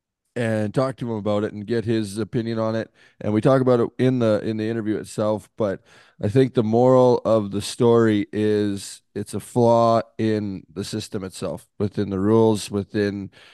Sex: male